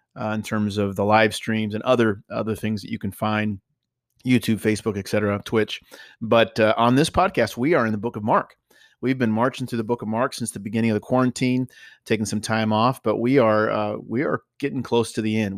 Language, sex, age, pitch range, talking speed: English, male, 30-49, 105-125 Hz, 235 wpm